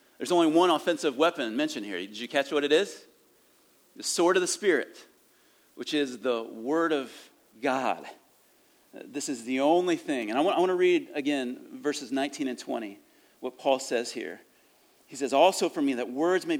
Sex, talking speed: male, 190 wpm